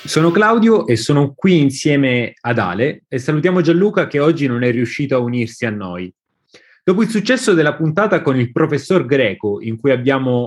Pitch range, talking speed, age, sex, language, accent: 130-180 Hz, 185 wpm, 30-49, male, Italian, native